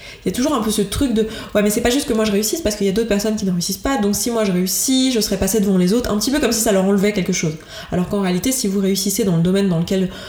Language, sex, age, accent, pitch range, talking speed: French, female, 20-39, French, 180-220 Hz, 350 wpm